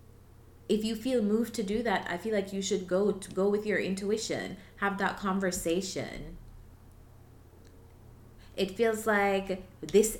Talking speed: 145 wpm